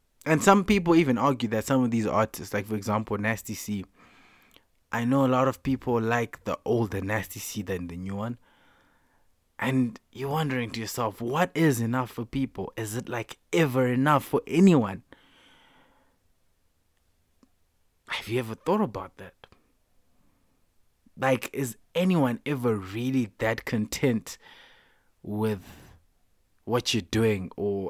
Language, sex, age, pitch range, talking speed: English, male, 20-39, 100-130 Hz, 140 wpm